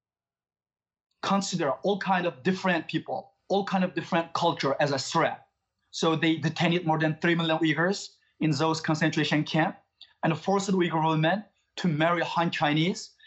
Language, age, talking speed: English, 30-49, 160 wpm